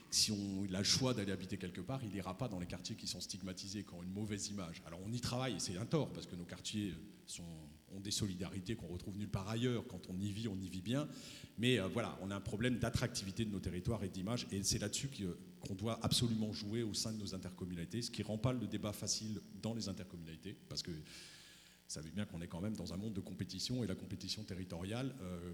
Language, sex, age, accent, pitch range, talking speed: English, male, 40-59, French, 95-115 Hz, 250 wpm